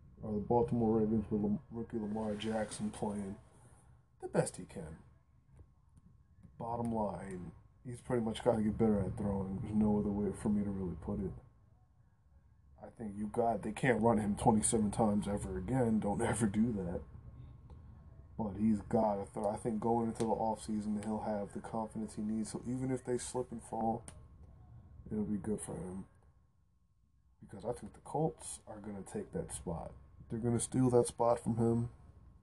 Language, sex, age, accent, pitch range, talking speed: English, male, 20-39, American, 100-115 Hz, 185 wpm